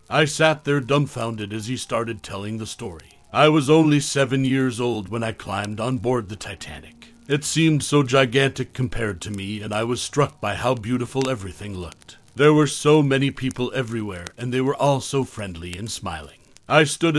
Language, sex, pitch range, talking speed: English, male, 105-135 Hz, 190 wpm